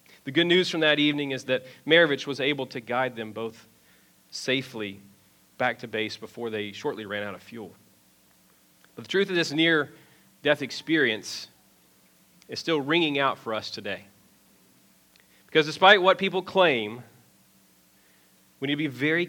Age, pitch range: 40-59, 110-170 Hz